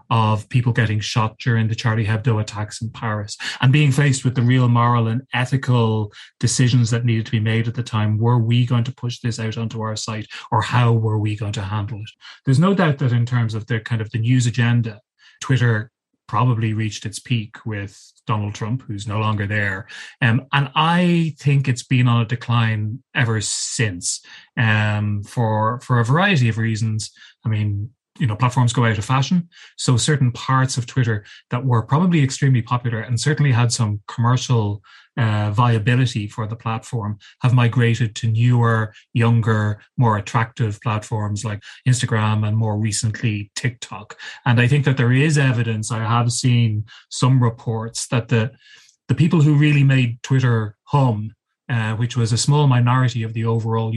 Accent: Irish